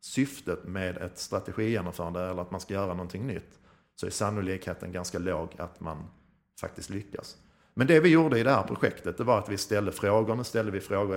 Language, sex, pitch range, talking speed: Swedish, male, 90-110 Hz, 205 wpm